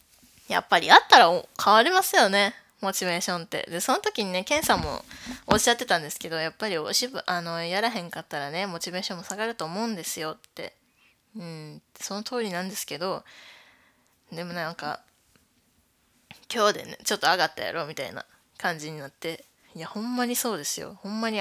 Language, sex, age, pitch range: Japanese, female, 20-39, 160-220 Hz